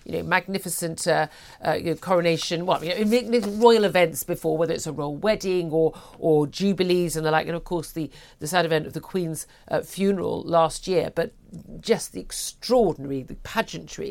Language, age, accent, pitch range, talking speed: English, 50-69, British, 160-200 Hz, 190 wpm